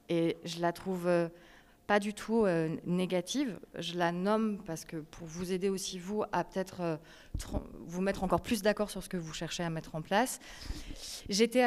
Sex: female